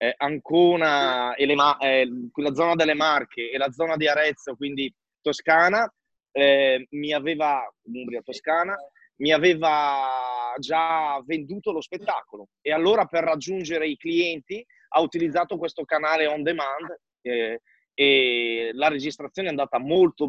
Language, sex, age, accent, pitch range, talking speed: Italian, male, 30-49, native, 130-165 Hz, 135 wpm